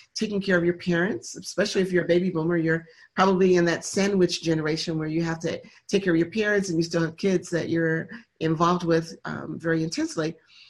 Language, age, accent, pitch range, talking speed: English, 50-69, American, 170-210 Hz, 215 wpm